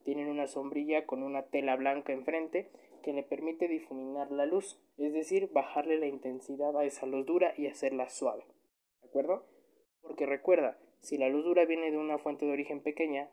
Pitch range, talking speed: 135-165 Hz, 185 wpm